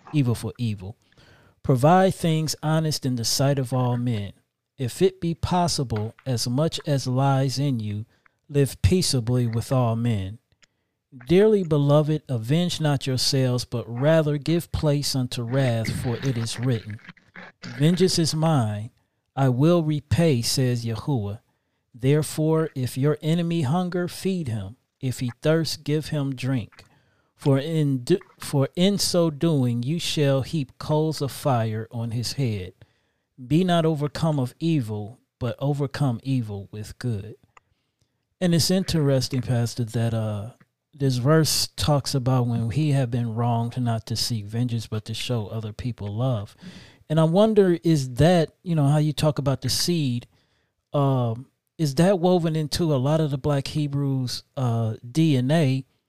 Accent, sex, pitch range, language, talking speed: American, male, 115-155 Hz, English, 150 wpm